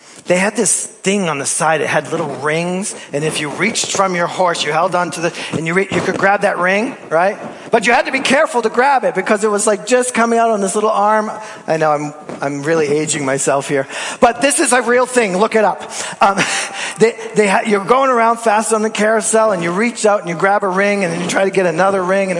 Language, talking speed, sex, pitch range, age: English, 265 wpm, male, 165-220 Hz, 40-59